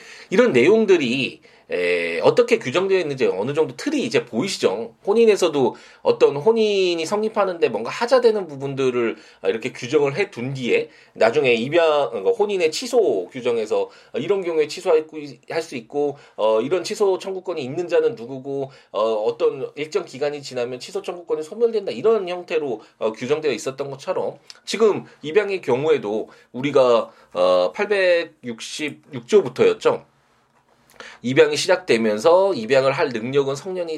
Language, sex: Korean, male